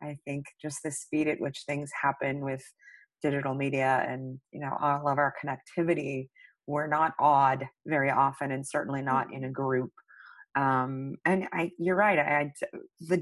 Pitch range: 135-160 Hz